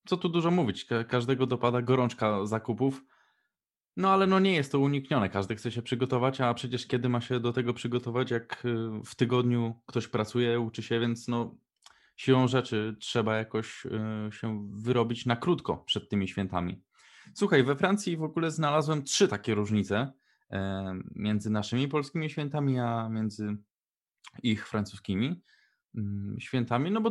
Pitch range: 110-140 Hz